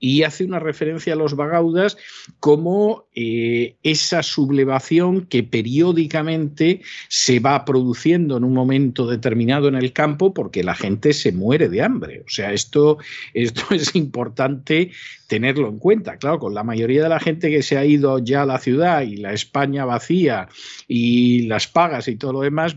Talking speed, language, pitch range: 170 wpm, Spanish, 115-150 Hz